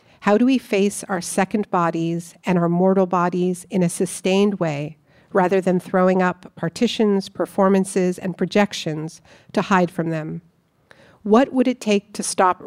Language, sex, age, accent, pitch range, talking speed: English, female, 50-69, American, 175-210 Hz, 155 wpm